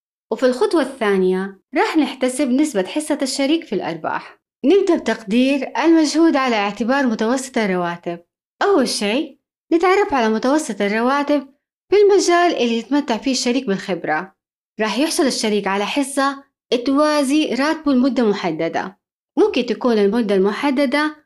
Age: 20-39